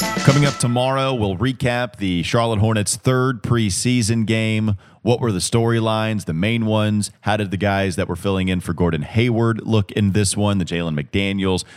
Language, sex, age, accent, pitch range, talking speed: English, male, 30-49, American, 85-110 Hz, 185 wpm